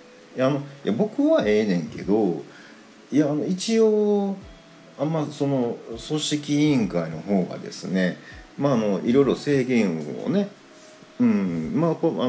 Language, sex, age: Japanese, male, 50-69